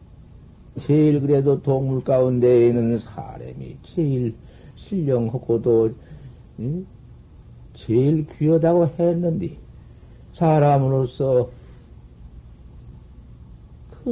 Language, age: Korean, 60-79